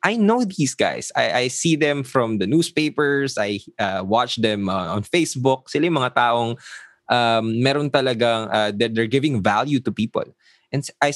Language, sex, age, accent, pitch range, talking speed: English, male, 20-39, Filipino, 95-130 Hz, 185 wpm